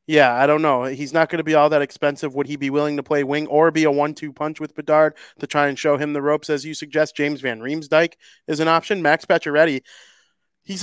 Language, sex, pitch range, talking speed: English, male, 140-165 Hz, 250 wpm